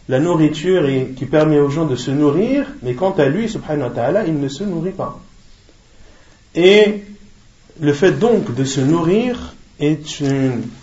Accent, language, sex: French, French, male